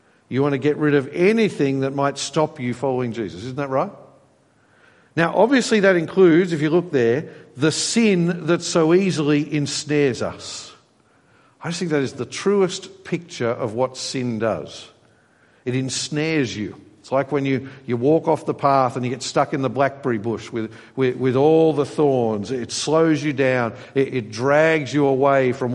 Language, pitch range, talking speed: English, 120-155 Hz, 180 wpm